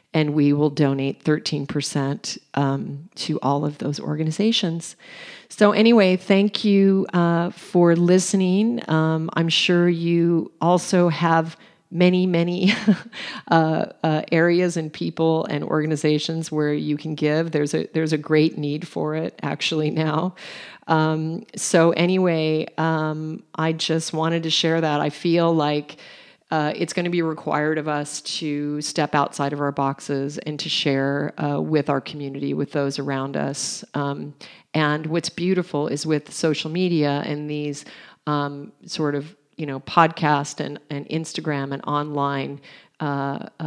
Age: 40-59